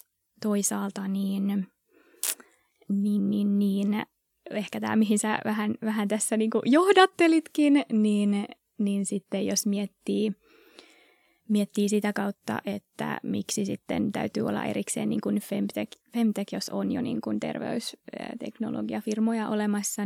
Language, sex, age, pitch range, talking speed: Finnish, female, 20-39, 200-240 Hz, 110 wpm